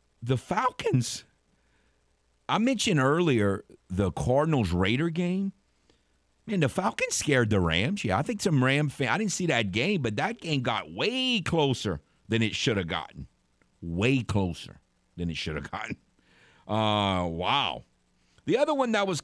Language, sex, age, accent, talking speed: English, male, 50-69, American, 155 wpm